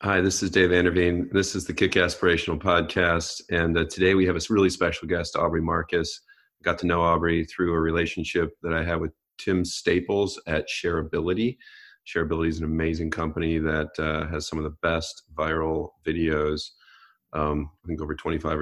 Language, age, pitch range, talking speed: English, 40-59, 80-90 Hz, 185 wpm